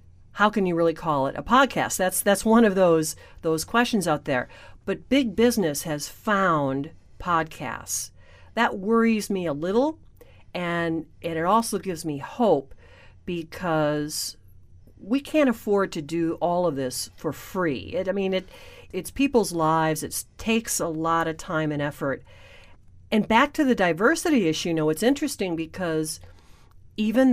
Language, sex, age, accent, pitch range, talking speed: English, female, 50-69, American, 150-195 Hz, 160 wpm